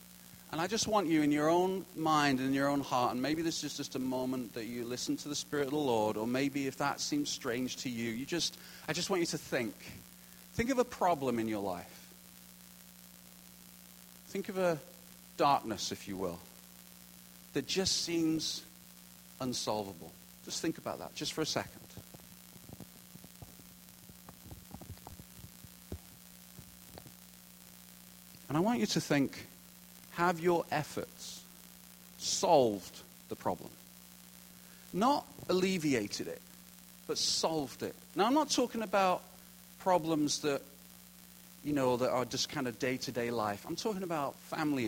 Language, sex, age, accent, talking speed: English, male, 40-59, British, 145 wpm